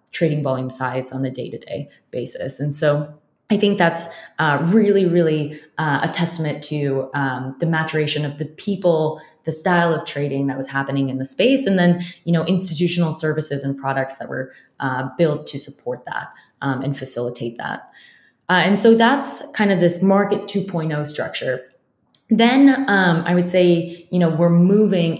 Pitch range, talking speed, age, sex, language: 140-170 Hz, 175 wpm, 20-39, female, English